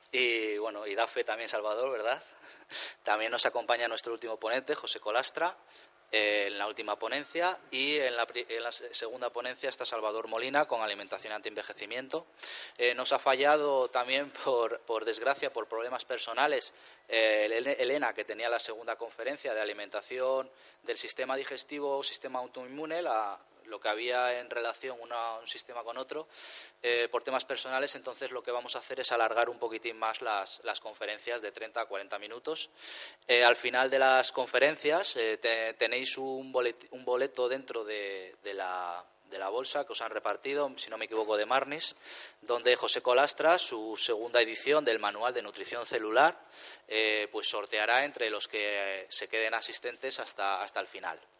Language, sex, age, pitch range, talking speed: Spanish, male, 20-39, 115-140 Hz, 175 wpm